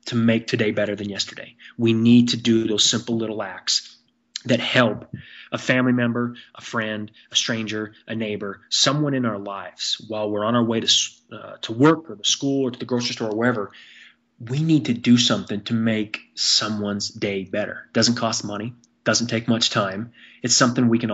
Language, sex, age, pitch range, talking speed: English, male, 20-39, 105-125 Hz, 200 wpm